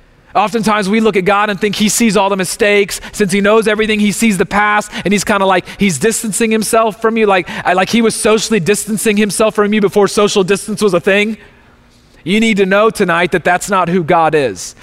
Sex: male